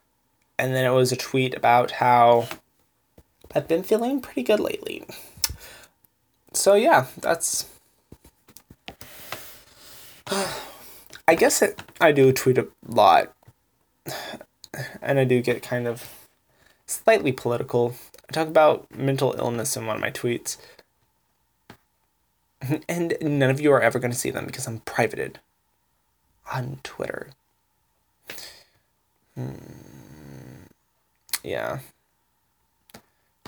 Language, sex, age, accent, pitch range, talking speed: English, male, 10-29, American, 125-155 Hz, 105 wpm